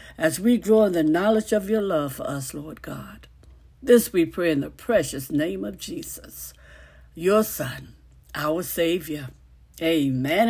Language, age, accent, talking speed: English, 60-79, American, 155 wpm